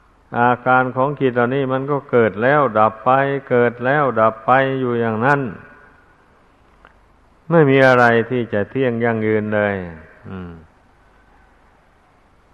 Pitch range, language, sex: 110-135 Hz, Thai, male